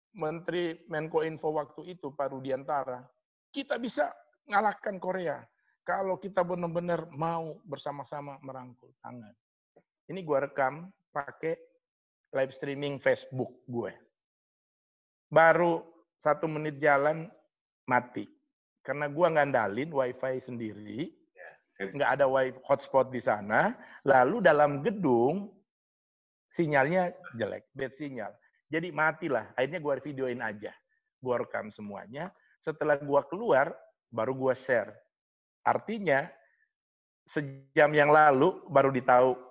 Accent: native